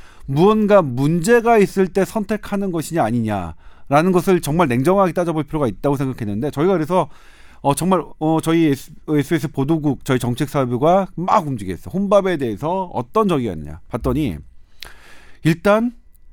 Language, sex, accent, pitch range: Korean, male, native, 135-210 Hz